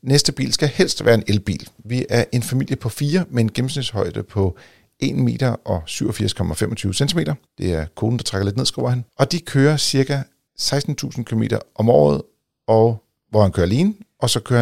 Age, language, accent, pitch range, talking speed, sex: 40-59, Danish, native, 100-130 Hz, 190 wpm, male